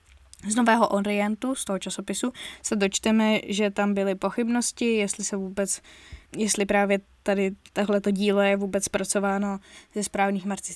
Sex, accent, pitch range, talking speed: female, native, 190-210 Hz, 140 wpm